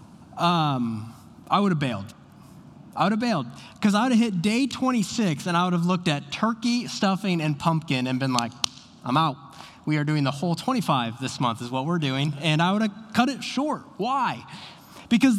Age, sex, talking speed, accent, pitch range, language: 20-39, male, 205 wpm, American, 140-210 Hz, English